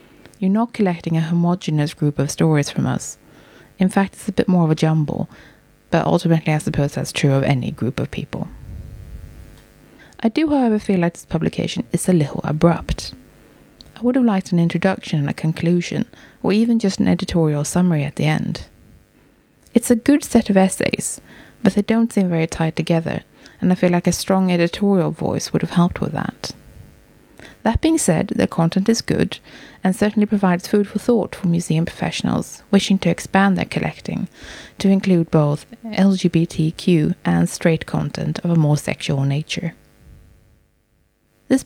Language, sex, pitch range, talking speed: English, female, 160-205 Hz, 170 wpm